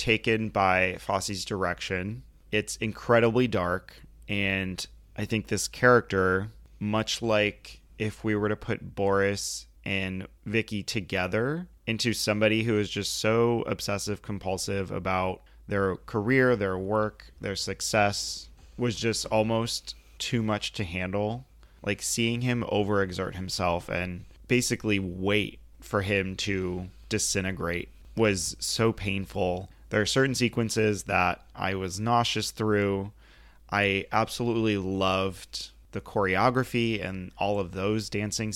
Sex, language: male, English